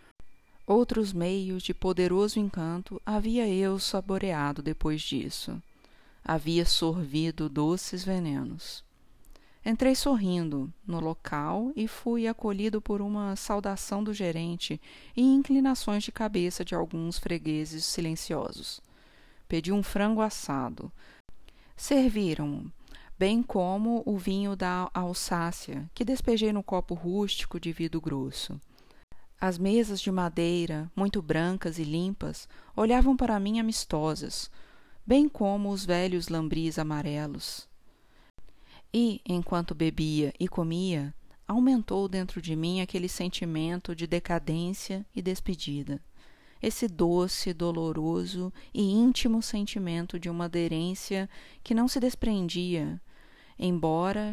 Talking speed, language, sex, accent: 110 wpm, Portuguese, female, Brazilian